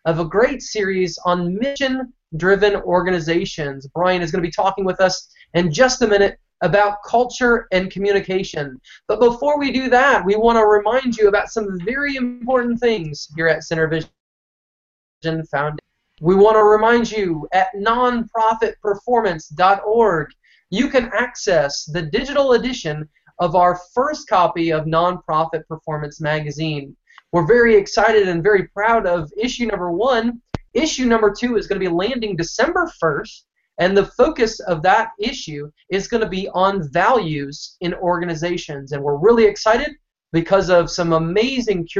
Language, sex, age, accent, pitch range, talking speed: English, male, 20-39, American, 170-225 Hz, 150 wpm